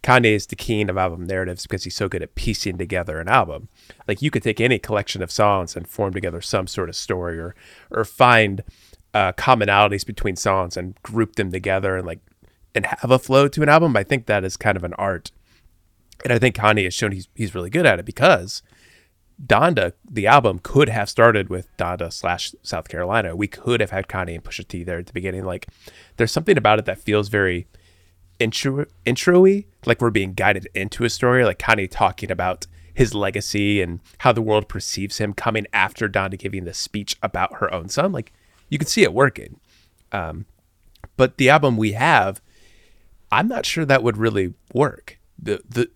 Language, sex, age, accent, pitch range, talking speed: English, male, 30-49, American, 90-115 Hz, 200 wpm